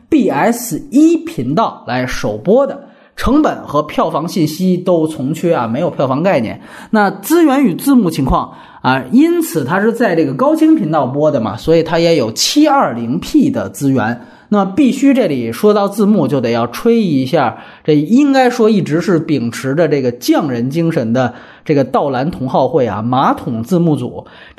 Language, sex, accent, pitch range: Chinese, male, native, 145-220 Hz